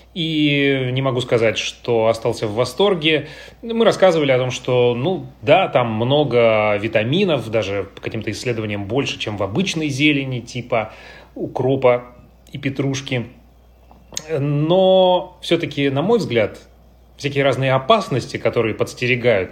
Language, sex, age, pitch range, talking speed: Russian, male, 30-49, 115-150 Hz, 125 wpm